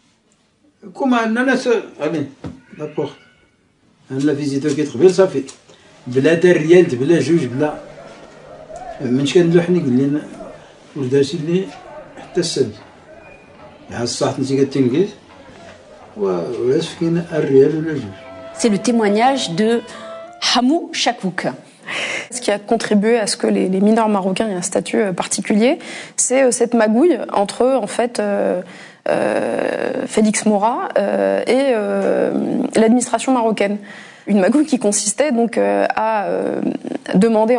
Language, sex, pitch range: French, male, 185-240 Hz